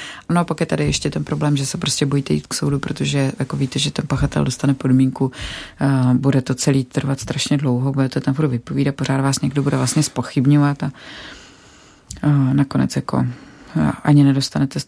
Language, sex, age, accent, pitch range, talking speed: Czech, female, 30-49, native, 140-160 Hz, 195 wpm